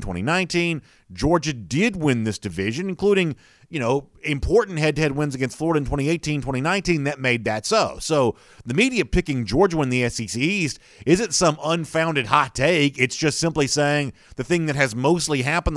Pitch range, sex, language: 115-150 Hz, male, English